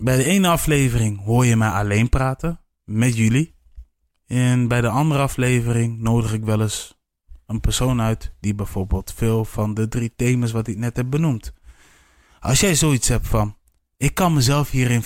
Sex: male